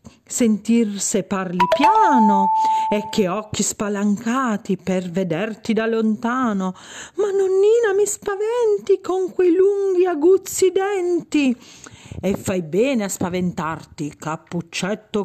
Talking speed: 100 wpm